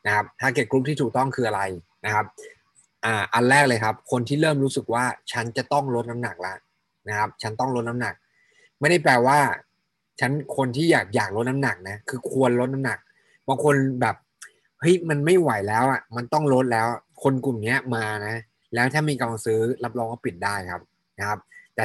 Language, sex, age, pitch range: Thai, male, 20-39, 105-130 Hz